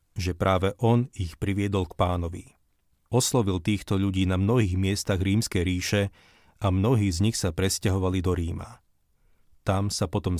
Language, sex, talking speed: Slovak, male, 150 wpm